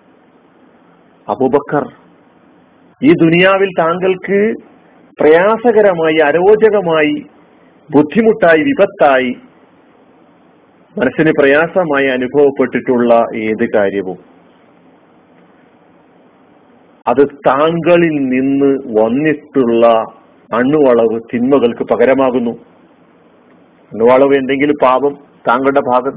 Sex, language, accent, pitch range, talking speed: male, Malayalam, native, 130-165 Hz, 55 wpm